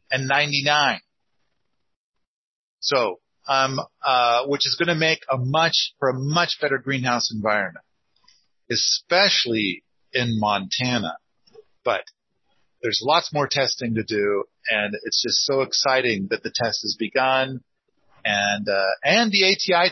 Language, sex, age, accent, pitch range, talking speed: English, male, 40-59, American, 120-155 Hz, 130 wpm